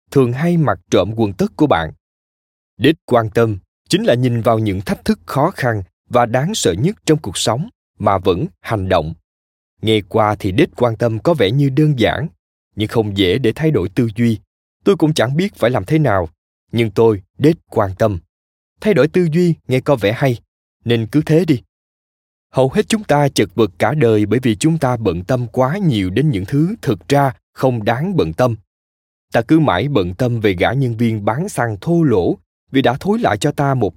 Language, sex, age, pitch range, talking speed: Vietnamese, male, 20-39, 100-150 Hz, 210 wpm